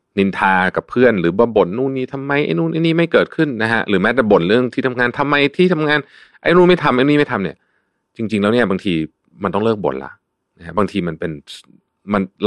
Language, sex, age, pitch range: Thai, male, 30-49, 85-120 Hz